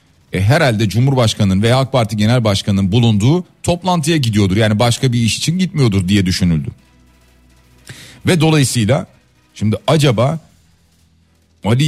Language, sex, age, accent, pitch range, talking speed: Turkish, male, 40-59, native, 90-135 Hz, 115 wpm